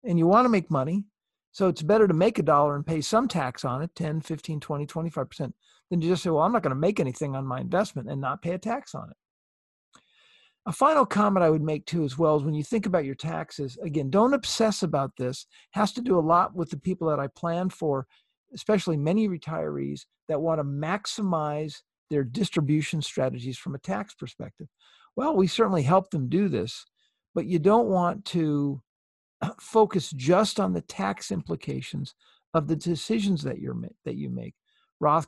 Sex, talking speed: male, 200 wpm